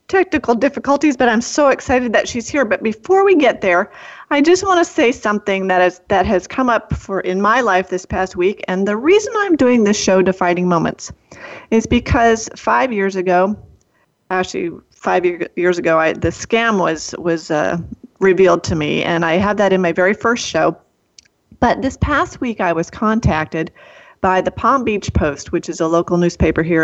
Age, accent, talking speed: 40-59, American, 195 wpm